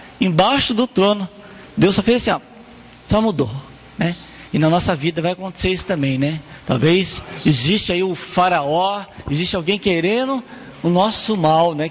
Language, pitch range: Portuguese, 175-225 Hz